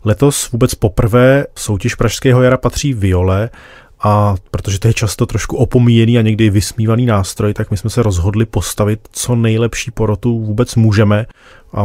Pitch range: 100-120 Hz